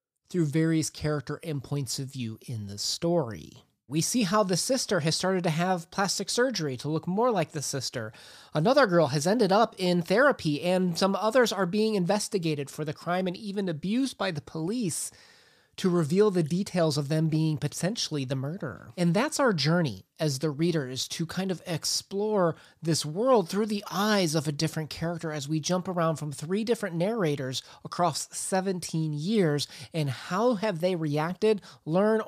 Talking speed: 180 wpm